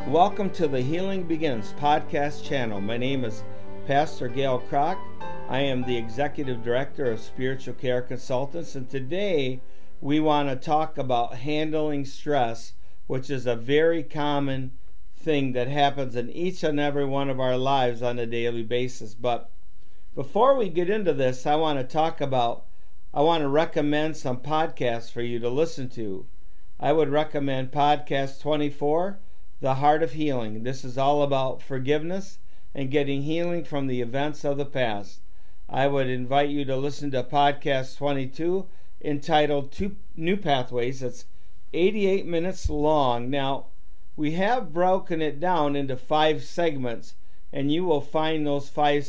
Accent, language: American, English